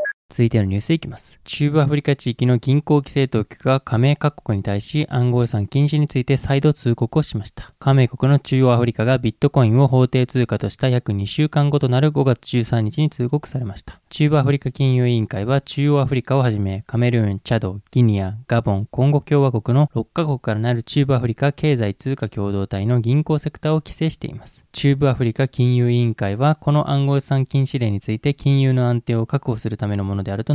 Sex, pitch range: male, 110-140 Hz